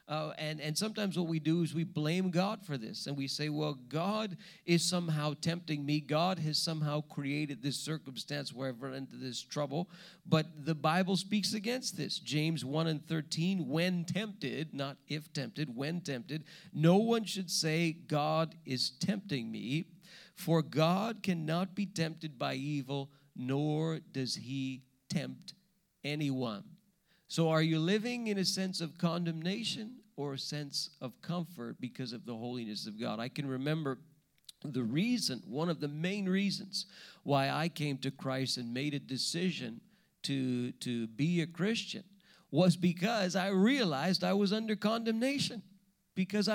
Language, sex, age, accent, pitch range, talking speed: English, male, 40-59, American, 150-195 Hz, 160 wpm